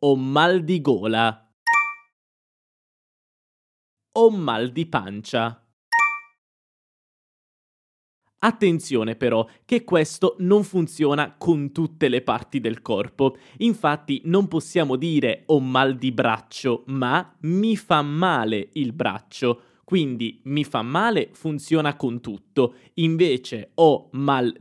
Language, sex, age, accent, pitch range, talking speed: Italian, male, 20-39, native, 120-170 Hz, 105 wpm